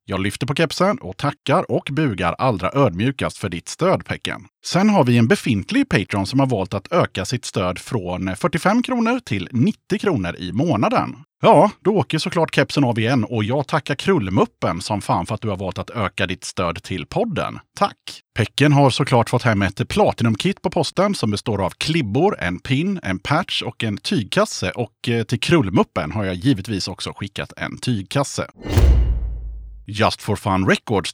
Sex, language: male, Swedish